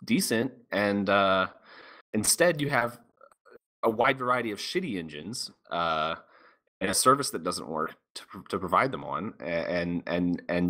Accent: American